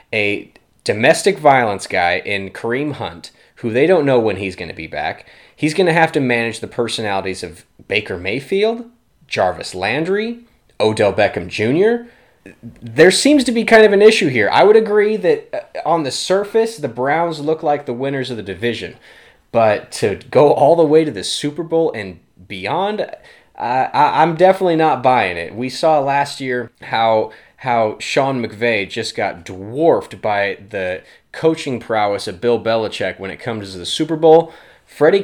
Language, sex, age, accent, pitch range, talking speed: English, male, 20-39, American, 110-165 Hz, 175 wpm